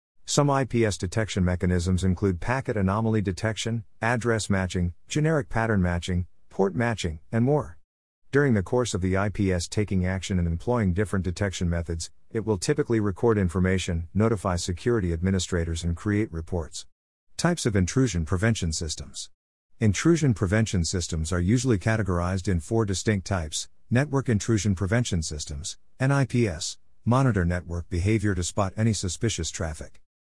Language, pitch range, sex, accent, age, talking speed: English, 90-115 Hz, male, American, 50-69, 140 wpm